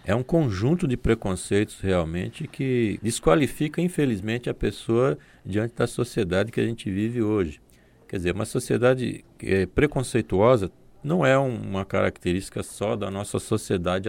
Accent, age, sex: Brazilian, 40-59, male